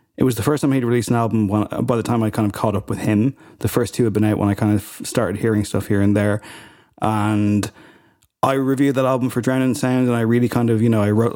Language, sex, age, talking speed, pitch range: English, male, 20-39, 280 wpm, 105-125 Hz